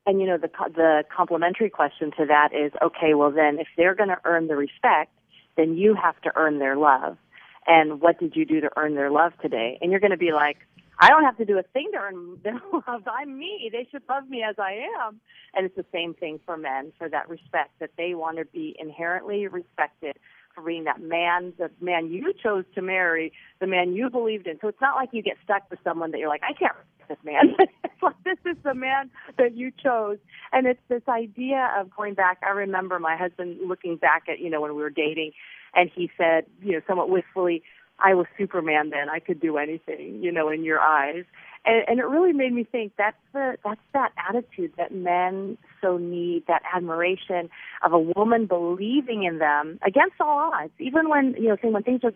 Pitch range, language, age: 165-225 Hz, English, 40-59